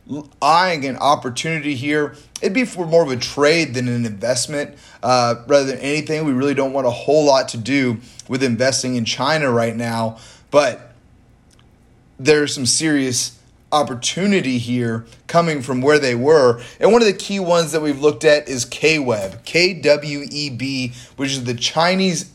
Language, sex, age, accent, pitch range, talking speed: English, male, 30-49, American, 120-160 Hz, 165 wpm